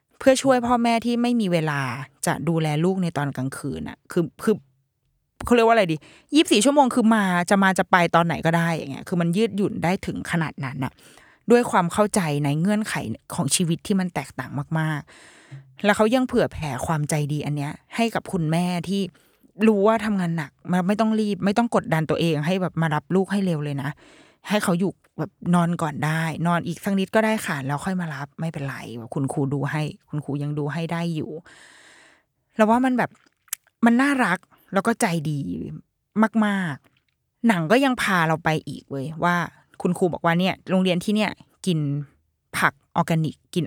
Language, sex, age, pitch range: Thai, female, 20-39, 150-200 Hz